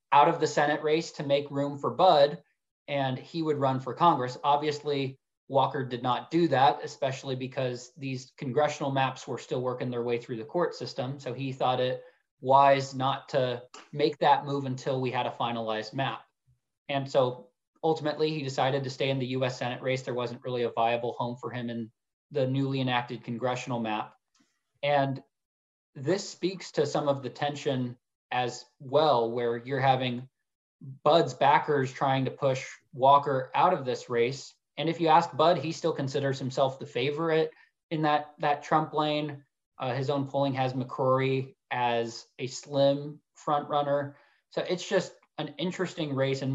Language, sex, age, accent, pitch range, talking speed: English, male, 20-39, American, 125-145 Hz, 175 wpm